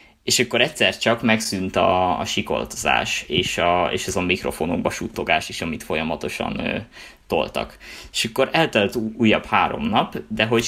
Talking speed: 155 wpm